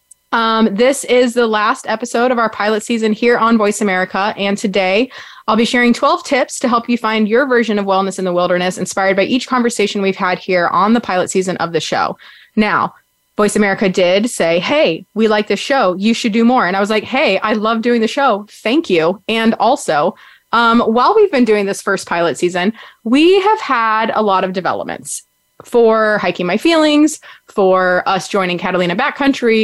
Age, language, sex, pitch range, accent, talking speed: 20-39, English, female, 195-250 Hz, American, 200 wpm